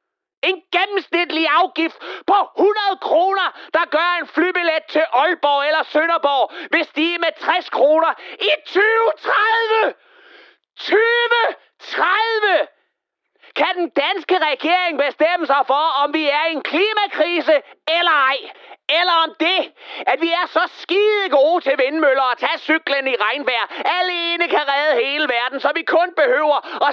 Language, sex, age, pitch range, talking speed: Danish, male, 40-59, 250-365 Hz, 145 wpm